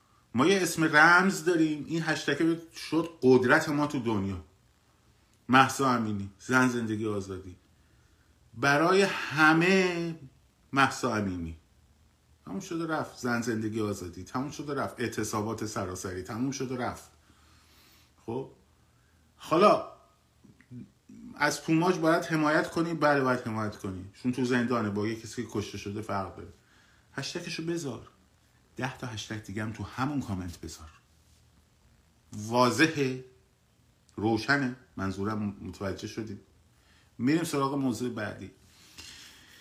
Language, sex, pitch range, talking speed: Persian, male, 100-140 Hz, 115 wpm